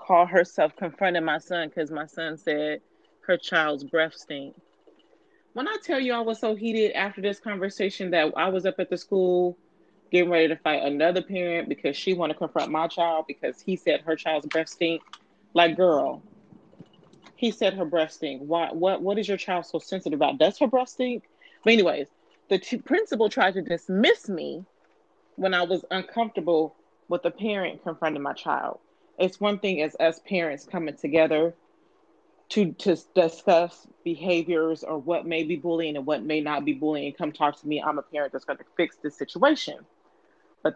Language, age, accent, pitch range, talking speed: English, 30-49, American, 155-195 Hz, 190 wpm